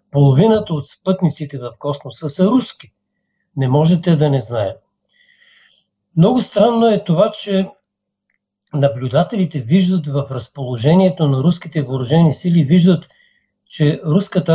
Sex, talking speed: male, 115 wpm